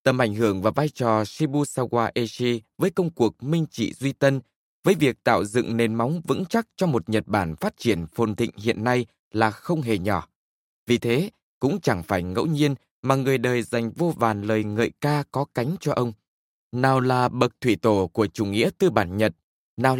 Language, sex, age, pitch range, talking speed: Vietnamese, male, 20-39, 110-140 Hz, 205 wpm